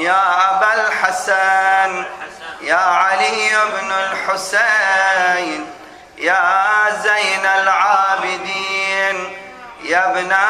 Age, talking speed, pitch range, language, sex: 30-49, 70 wpm, 190-195 Hz, Arabic, male